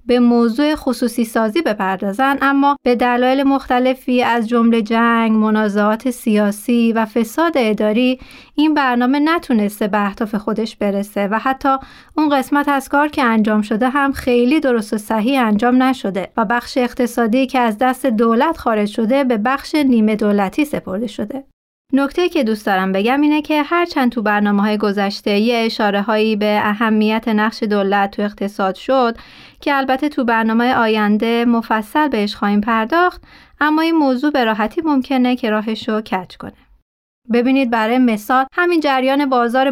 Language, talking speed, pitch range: Persian, 155 wpm, 220-270 Hz